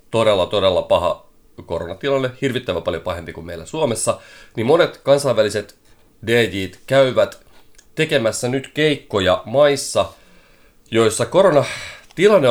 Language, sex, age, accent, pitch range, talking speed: Finnish, male, 30-49, native, 90-120 Hz, 100 wpm